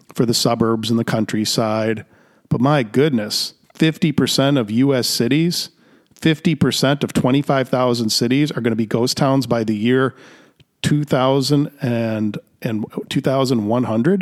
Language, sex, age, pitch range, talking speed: English, male, 40-59, 120-160 Hz, 115 wpm